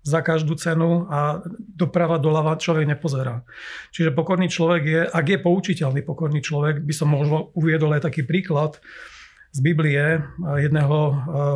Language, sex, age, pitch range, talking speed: Slovak, male, 40-59, 150-170 Hz, 140 wpm